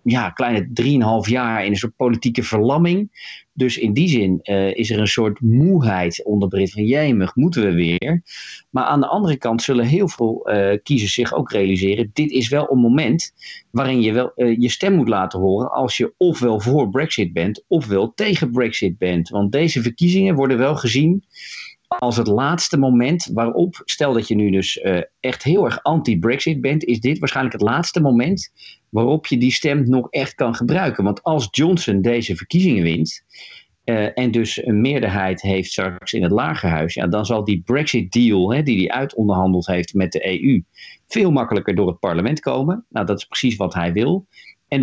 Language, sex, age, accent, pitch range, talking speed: Dutch, male, 40-59, Dutch, 100-140 Hz, 185 wpm